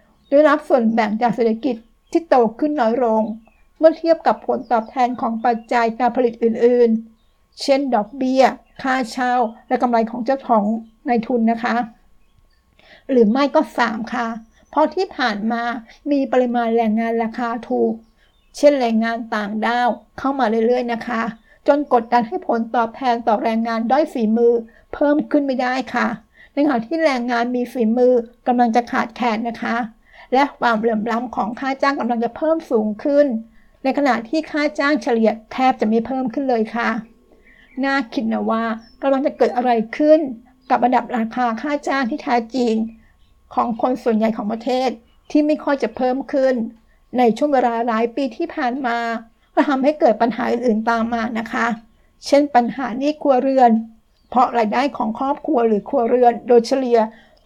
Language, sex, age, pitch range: Thai, female, 60-79, 230-270 Hz